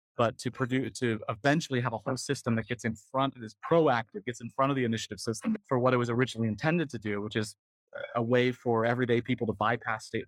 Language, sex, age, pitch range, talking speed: English, male, 30-49, 115-145 Hz, 240 wpm